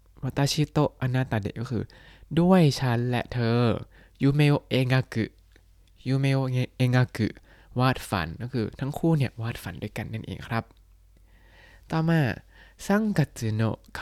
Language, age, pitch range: Thai, 20-39, 105-130 Hz